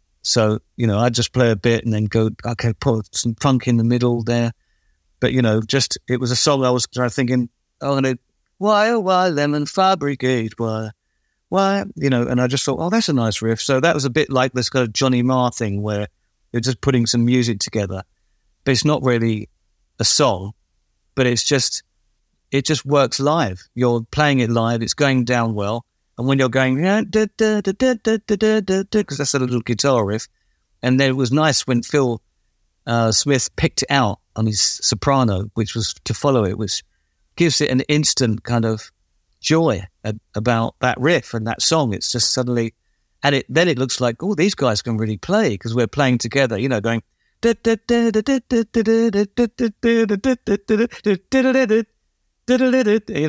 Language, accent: English, British